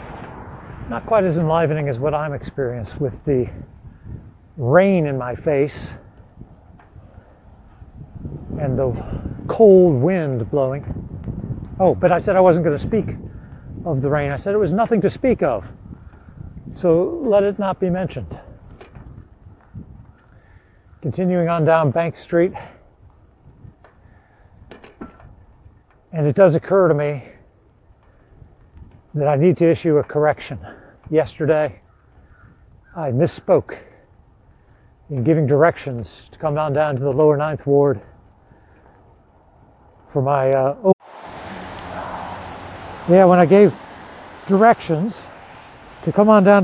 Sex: male